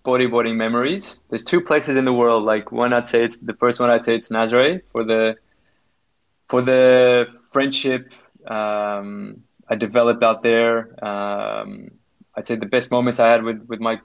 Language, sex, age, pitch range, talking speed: English, male, 20-39, 110-125 Hz, 175 wpm